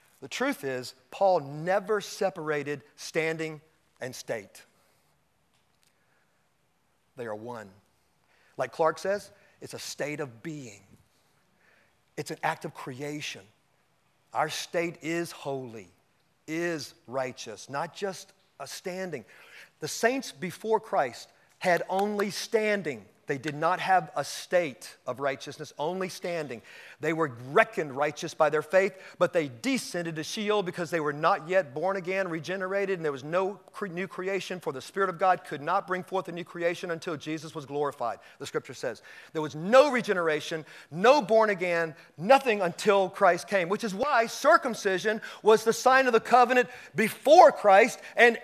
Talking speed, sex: 150 wpm, male